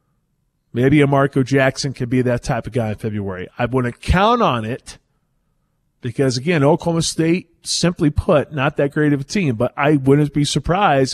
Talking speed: 185 wpm